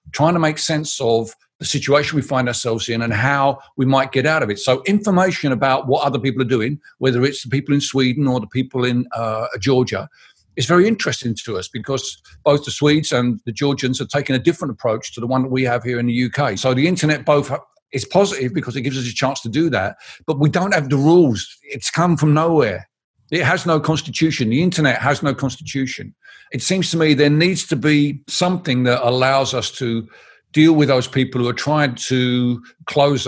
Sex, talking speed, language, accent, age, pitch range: male, 220 wpm, English, British, 50-69, 125-150 Hz